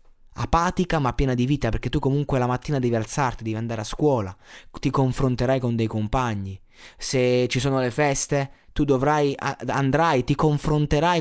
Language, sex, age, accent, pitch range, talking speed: Italian, male, 20-39, native, 115-145 Hz, 170 wpm